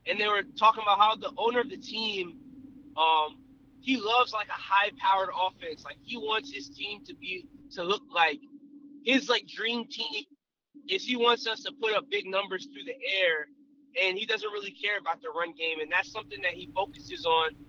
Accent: American